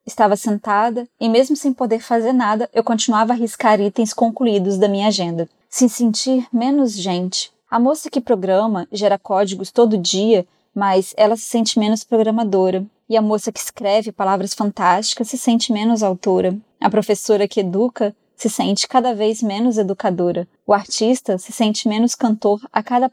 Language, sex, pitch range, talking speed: Portuguese, female, 200-250 Hz, 165 wpm